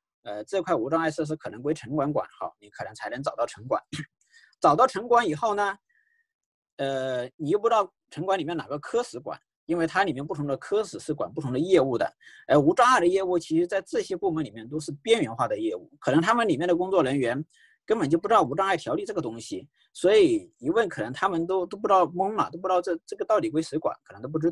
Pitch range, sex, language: 145-195 Hz, male, Chinese